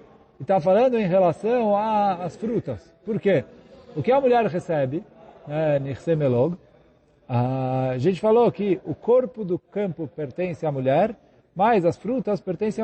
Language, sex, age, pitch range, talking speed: Portuguese, male, 50-69, 155-230 Hz, 135 wpm